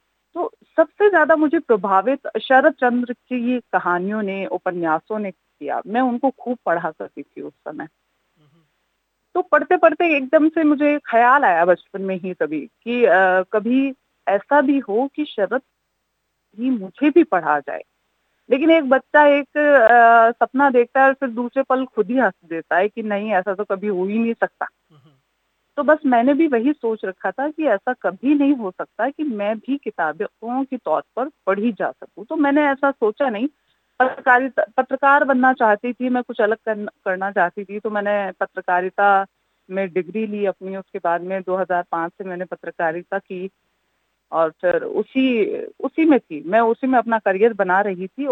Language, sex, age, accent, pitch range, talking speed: Hindi, female, 30-49, native, 195-280 Hz, 170 wpm